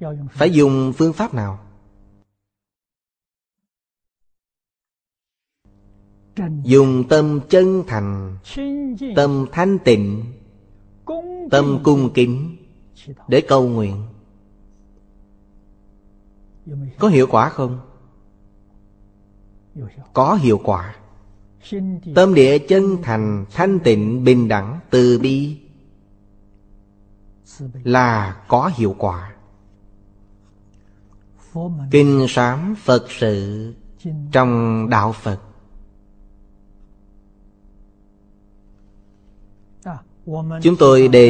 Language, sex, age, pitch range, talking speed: Vietnamese, male, 20-39, 100-135 Hz, 70 wpm